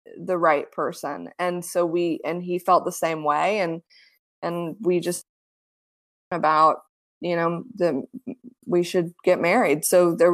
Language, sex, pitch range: English, female, 175-255 Hz